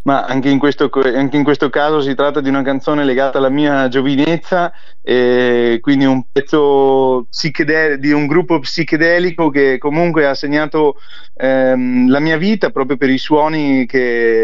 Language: Italian